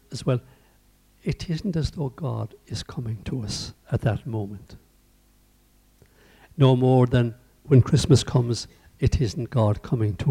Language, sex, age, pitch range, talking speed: English, male, 60-79, 110-130 Hz, 145 wpm